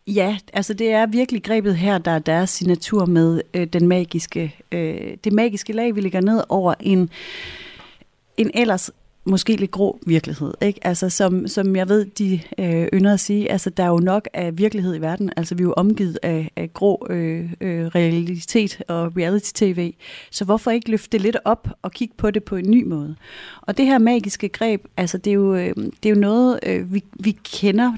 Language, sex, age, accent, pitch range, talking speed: Danish, female, 30-49, native, 180-220 Hz, 200 wpm